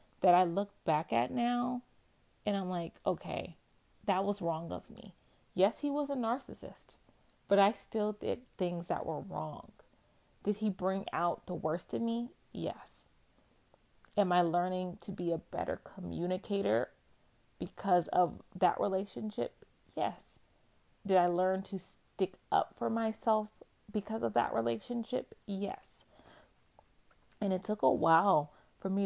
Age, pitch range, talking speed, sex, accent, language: 30-49, 170-210 Hz, 145 wpm, female, American, English